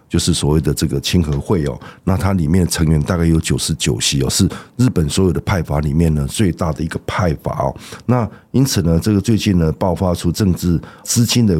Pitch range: 80-105 Hz